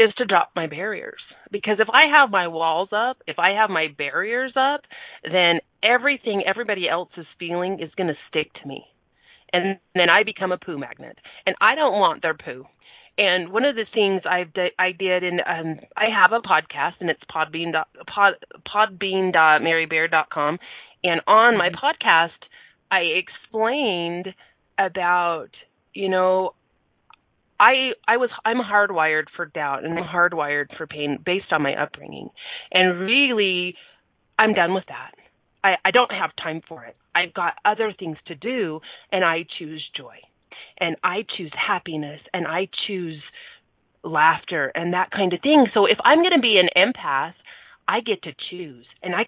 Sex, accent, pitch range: female, American, 165-220 Hz